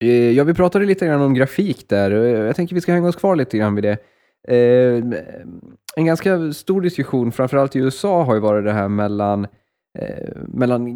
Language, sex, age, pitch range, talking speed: Swedish, male, 20-39, 105-125 Hz, 180 wpm